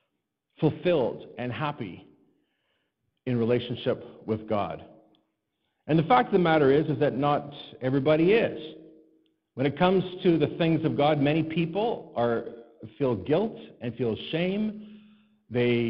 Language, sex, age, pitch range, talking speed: English, male, 50-69, 120-165 Hz, 135 wpm